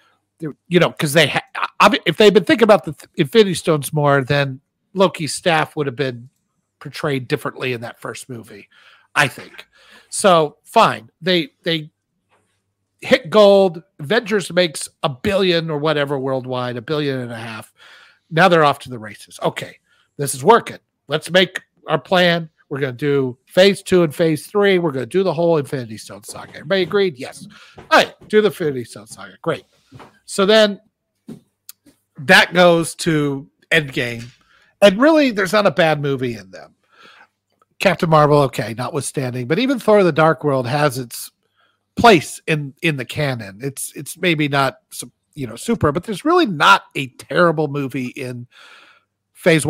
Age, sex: 50-69, male